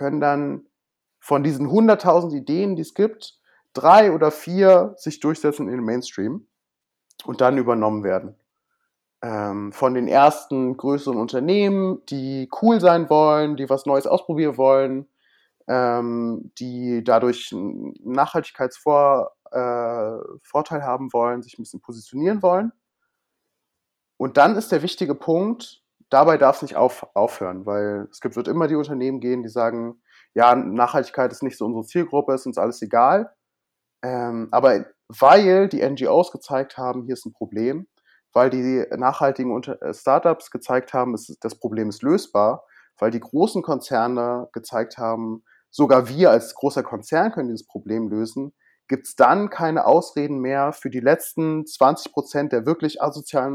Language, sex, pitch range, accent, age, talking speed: German, male, 125-155 Hz, German, 30-49, 145 wpm